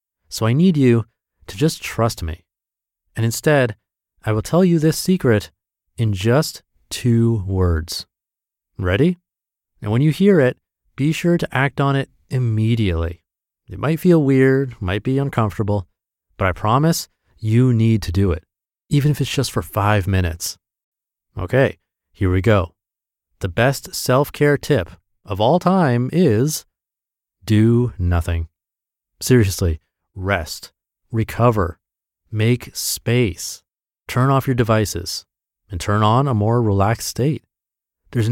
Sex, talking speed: male, 135 wpm